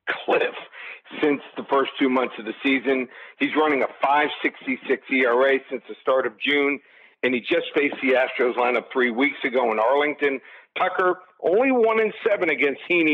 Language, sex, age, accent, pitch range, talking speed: English, male, 50-69, American, 130-175 Hz, 175 wpm